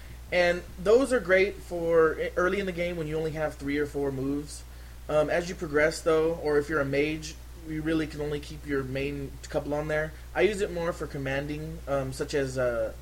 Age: 20-39